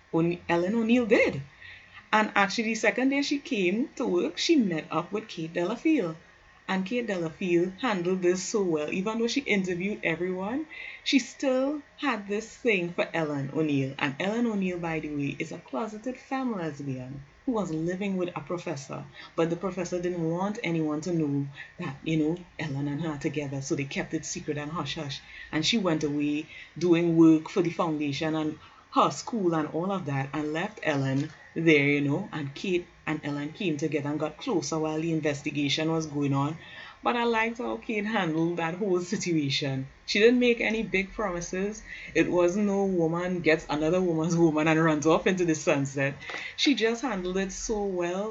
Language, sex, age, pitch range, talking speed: English, female, 20-39, 155-205 Hz, 185 wpm